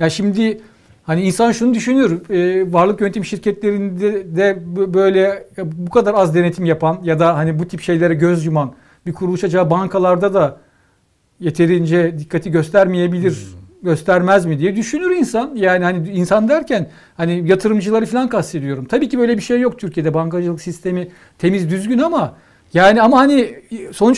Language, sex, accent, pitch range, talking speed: Turkish, male, native, 165-215 Hz, 150 wpm